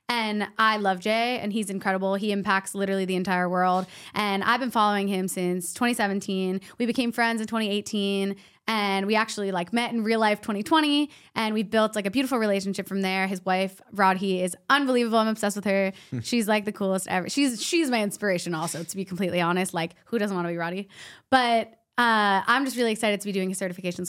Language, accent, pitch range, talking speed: English, American, 185-225 Hz, 210 wpm